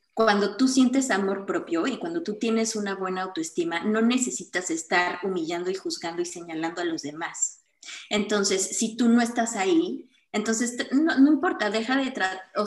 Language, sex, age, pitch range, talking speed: Spanish, female, 20-39, 195-285 Hz, 180 wpm